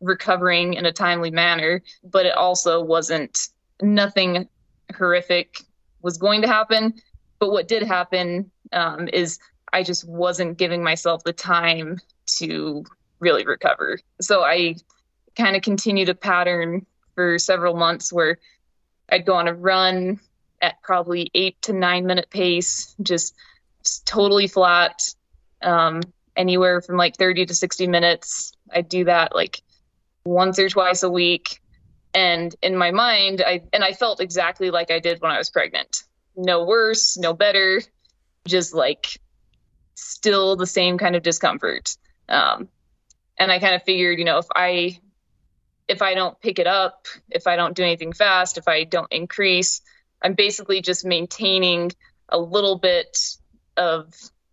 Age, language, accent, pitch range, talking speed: 20-39, English, American, 170-190 Hz, 150 wpm